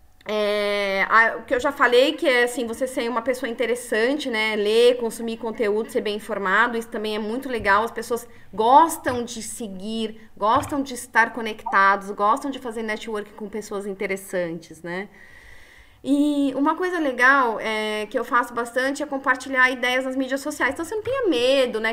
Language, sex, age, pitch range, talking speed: Portuguese, female, 20-39, 215-270 Hz, 180 wpm